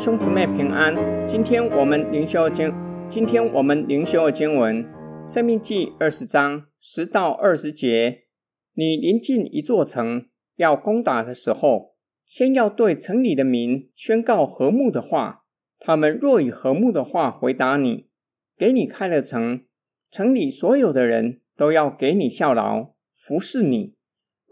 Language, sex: Chinese, male